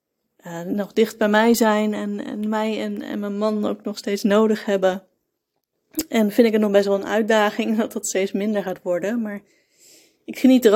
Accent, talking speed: Dutch, 205 wpm